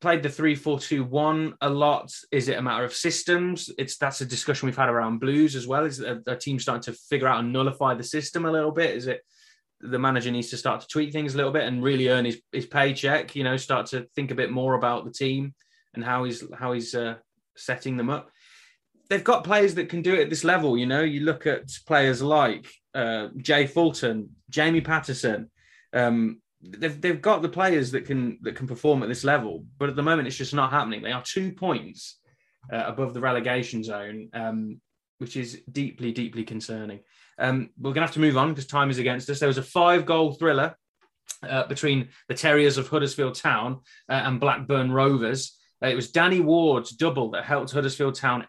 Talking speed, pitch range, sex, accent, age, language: 215 wpm, 125-150 Hz, male, British, 20-39, English